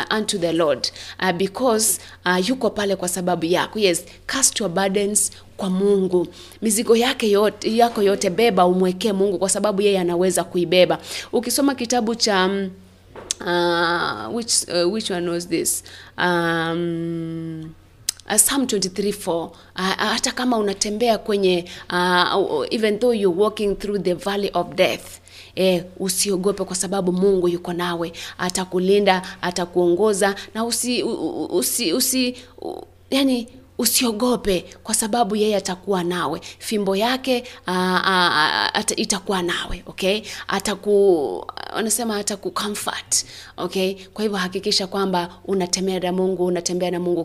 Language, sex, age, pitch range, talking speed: English, female, 30-49, 180-215 Hz, 135 wpm